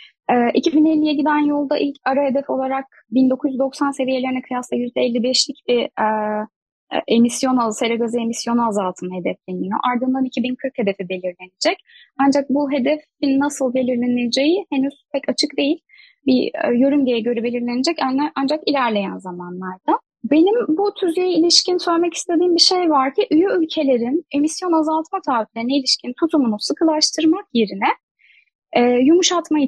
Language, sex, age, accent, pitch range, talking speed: Turkish, female, 10-29, native, 240-325 Hz, 125 wpm